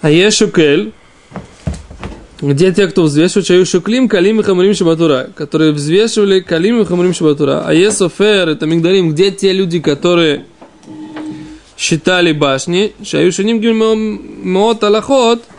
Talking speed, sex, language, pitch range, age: 135 wpm, male, Russian, 160-210 Hz, 20-39